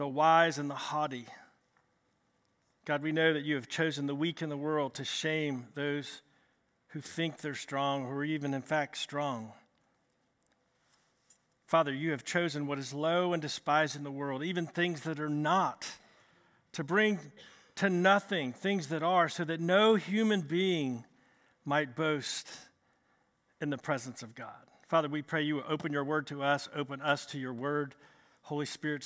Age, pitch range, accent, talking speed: 50-69, 140-175 Hz, American, 170 wpm